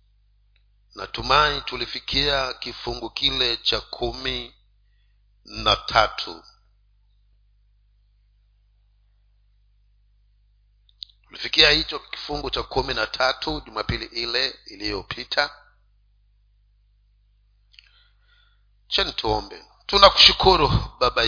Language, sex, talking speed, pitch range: Swahili, male, 60 wpm, 100-130 Hz